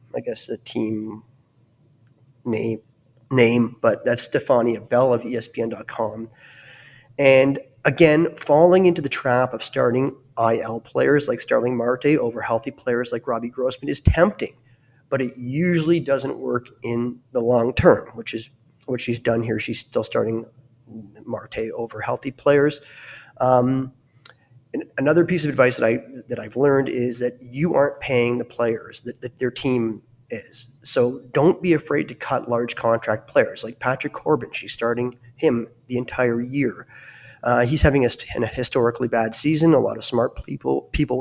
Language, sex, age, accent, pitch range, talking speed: English, male, 30-49, American, 120-135 Hz, 160 wpm